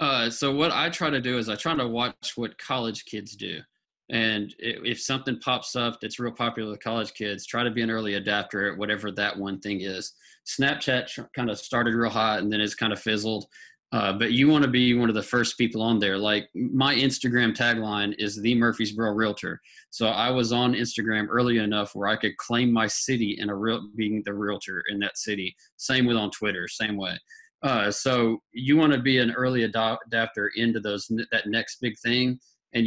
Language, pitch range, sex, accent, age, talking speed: English, 105-120 Hz, male, American, 20-39, 210 wpm